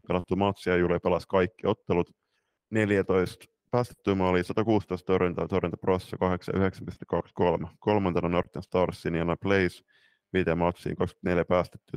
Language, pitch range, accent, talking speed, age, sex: Finnish, 85-95 Hz, native, 110 wpm, 30-49, male